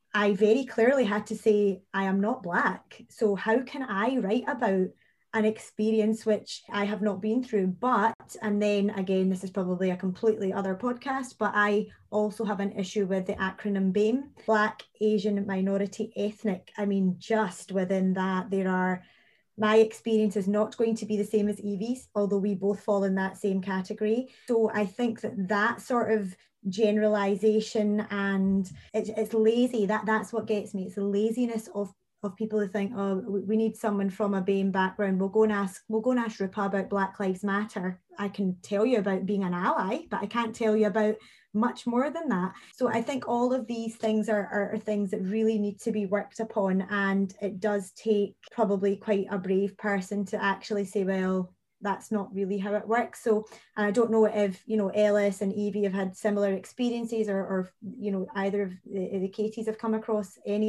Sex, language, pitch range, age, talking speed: female, English, 195-220 Hz, 20-39, 200 wpm